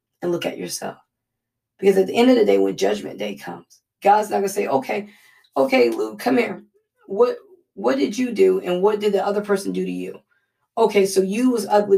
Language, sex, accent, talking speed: English, female, American, 215 wpm